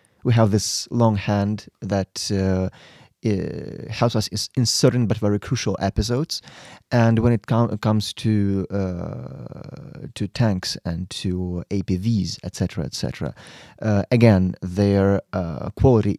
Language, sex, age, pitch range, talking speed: English, male, 30-49, 100-120 Hz, 130 wpm